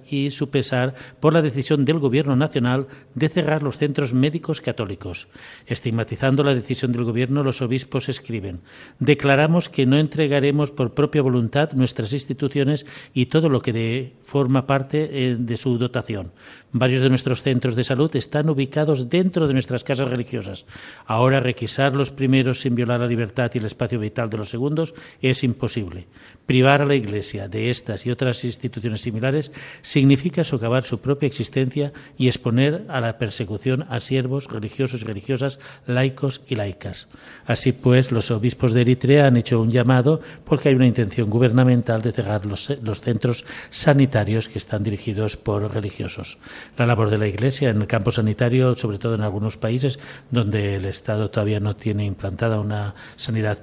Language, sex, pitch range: Spanish, male, 110-135 Hz